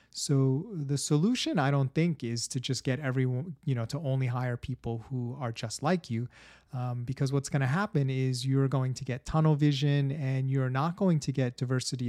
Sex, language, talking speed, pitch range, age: male, English, 210 wpm, 120-145 Hz, 30-49